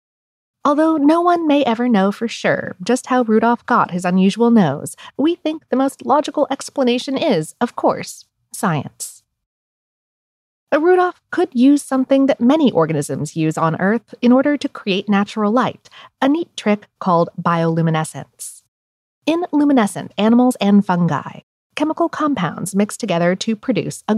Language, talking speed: English, 145 wpm